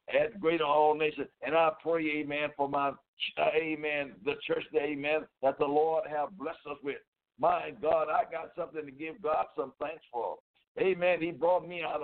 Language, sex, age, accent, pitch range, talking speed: English, male, 60-79, American, 130-165 Hz, 190 wpm